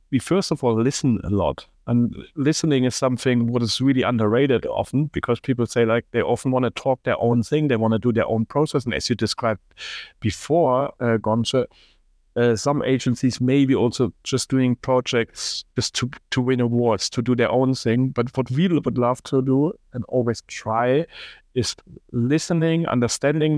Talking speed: 185 wpm